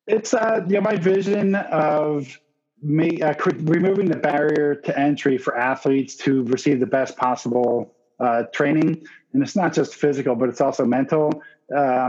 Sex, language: male, English